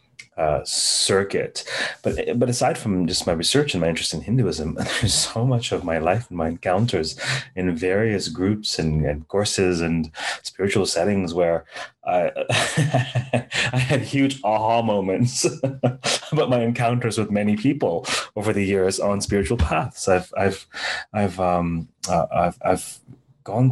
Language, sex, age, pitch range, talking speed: English, male, 30-49, 90-110 Hz, 150 wpm